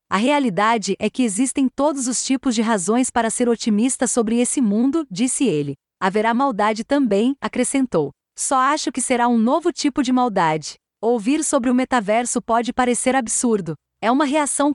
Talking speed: 165 wpm